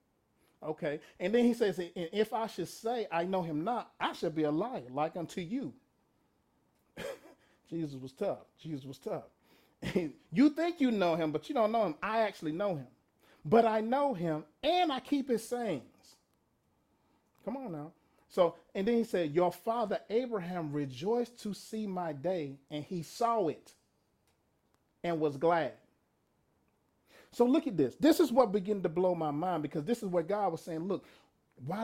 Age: 40-59